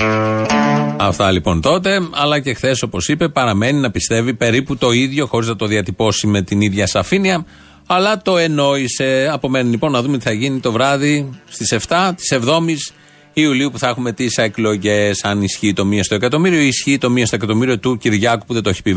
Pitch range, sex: 115-160 Hz, male